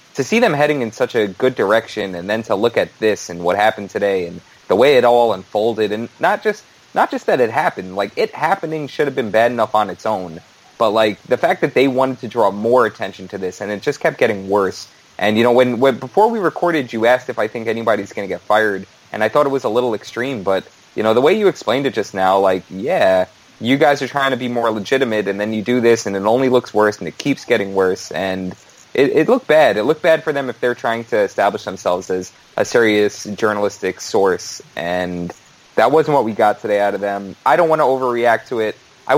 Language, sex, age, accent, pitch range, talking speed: English, male, 20-39, American, 105-135 Hz, 250 wpm